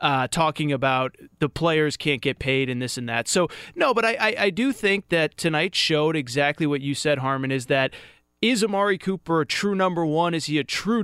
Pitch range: 140-180 Hz